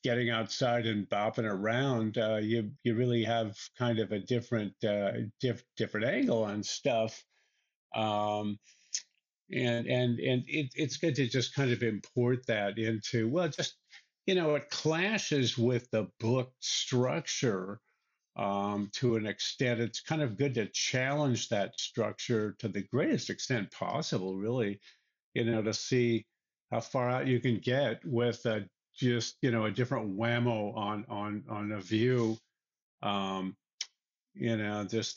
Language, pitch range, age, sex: English, 105-125 Hz, 50-69, male